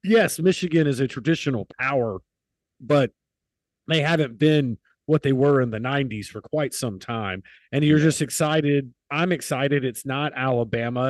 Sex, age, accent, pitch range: male, 40-59, American, 125-155 Hz